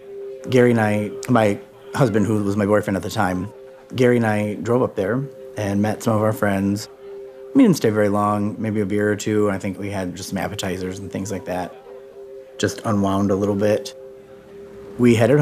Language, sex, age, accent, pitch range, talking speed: English, male, 30-49, American, 100-125 Hz, 200 wpm